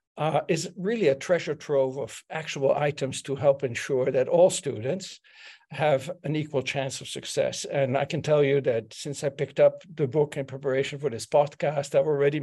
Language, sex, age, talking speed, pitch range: English, male, 60-79, 195 wpm, 140-180 Hz